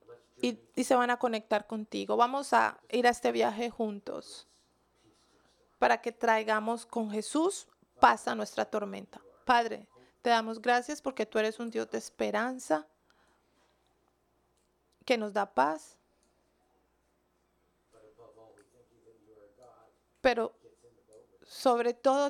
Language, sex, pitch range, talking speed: English, female, 215-260 Hz, 110 wpm